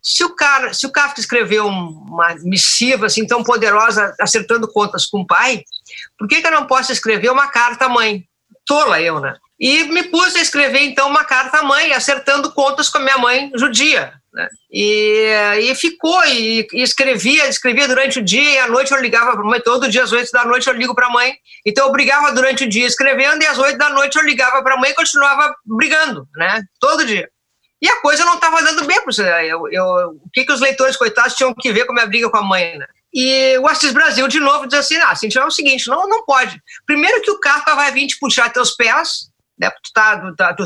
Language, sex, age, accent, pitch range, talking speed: Portuguese, female, 50-69, Brazilian, 225-290 Hz, 235 wpm